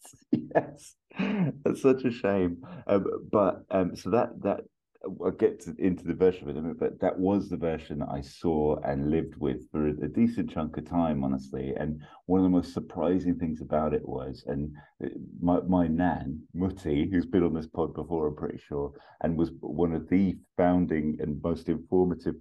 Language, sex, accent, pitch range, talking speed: English, male, British, 75-90 Hz, 190 wpm